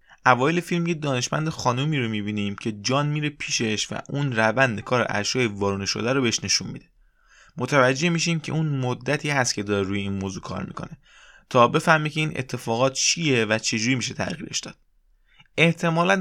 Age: 20-39